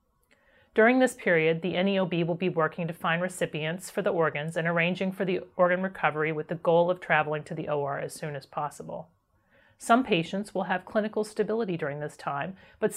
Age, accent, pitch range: 40-59, American, 165-205 Hz